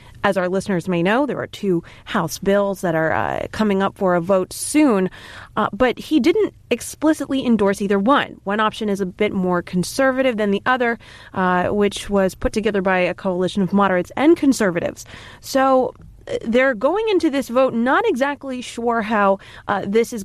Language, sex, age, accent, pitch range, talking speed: English, female, 20-39, American, 185-245 Hz, 185 wpm